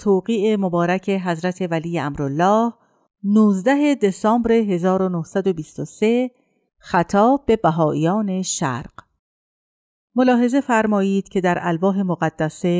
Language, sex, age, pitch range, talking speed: Persian, female, 50-69, 175-215 Hz, 85 wpm